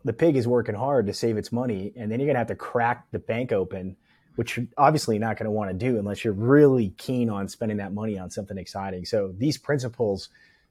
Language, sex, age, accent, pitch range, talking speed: English, male, 30-49, American, 100-120 Hz, 235 wpm